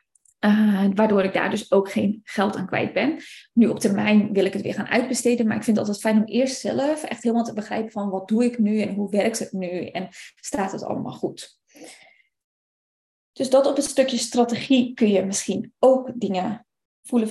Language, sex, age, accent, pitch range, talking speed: Dutch, female, 20-39, Dutch, 200-255 Hz, 210 wpm